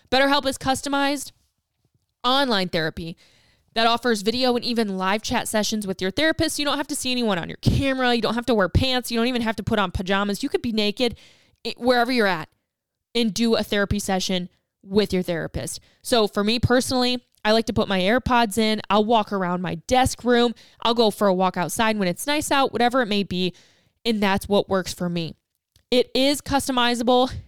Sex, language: female, English